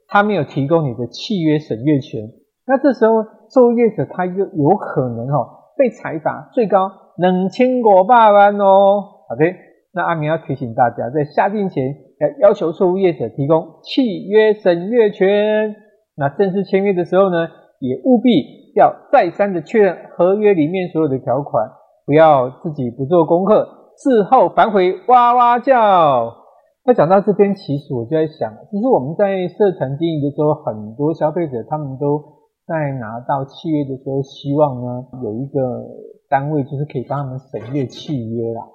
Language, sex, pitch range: Chinese, male, 140-200 Hz